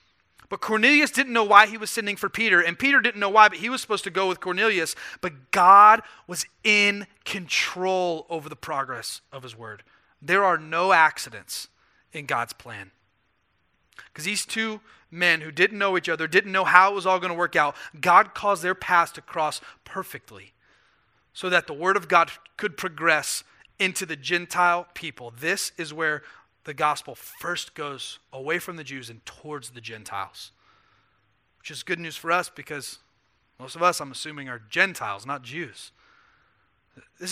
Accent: American